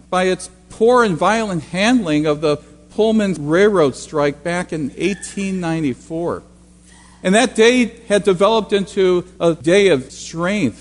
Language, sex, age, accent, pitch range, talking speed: English, male, 50-69, American, 140-200 Hz, 135 wpm